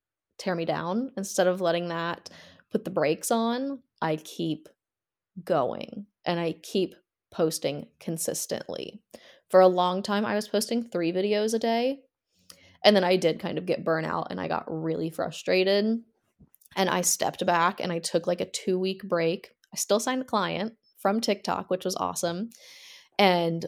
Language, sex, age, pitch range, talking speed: English, female, 20-39, 170-210 Hz, 165 wpm